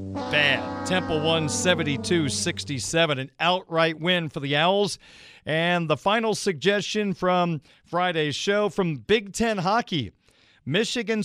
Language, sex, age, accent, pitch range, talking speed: English, male, 50-69, American, 160-210 Hz, 115 wpm